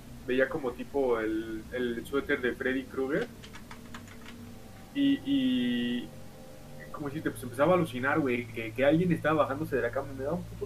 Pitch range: 115-150 Hz